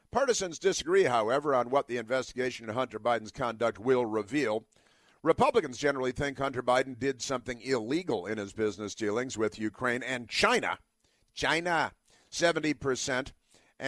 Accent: American